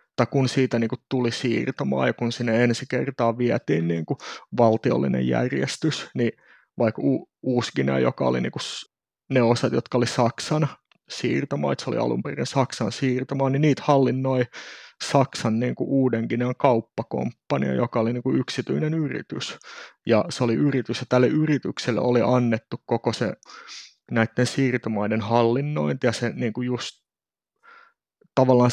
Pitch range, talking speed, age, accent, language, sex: 115-130 Hz, 140 wpm, 30-49, native, Finnish, male